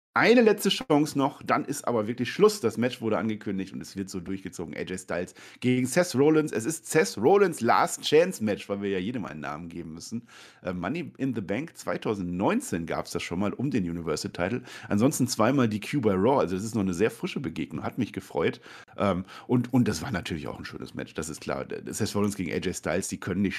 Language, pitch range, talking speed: German, 100-145 Hz, 225 wpm